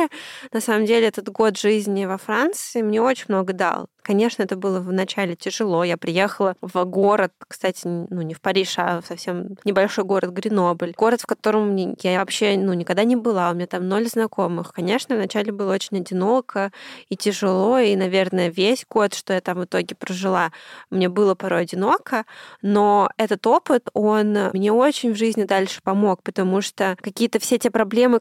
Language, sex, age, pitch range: Russian, female, 20-39, 195-225 Hz